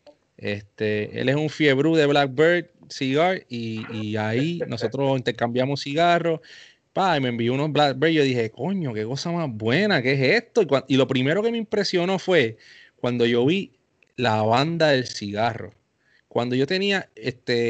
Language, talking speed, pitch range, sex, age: English, 165 wpm, 120-165 Hz, male, 30-49